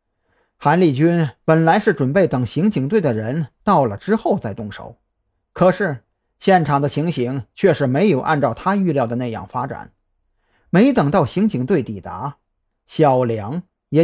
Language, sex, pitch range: Chinese, male, 125-185 Hz